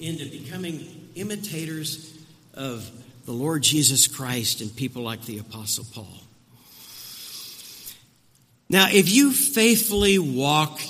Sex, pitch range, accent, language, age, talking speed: male, 125-200 Hz, American, English, 50-69, 105 wpm